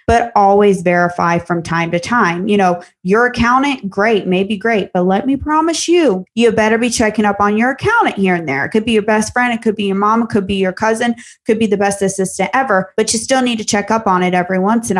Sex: female